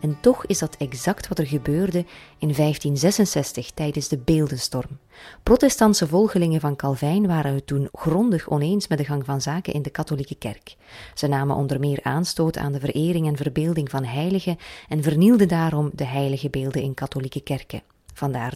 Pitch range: 140-185 Hz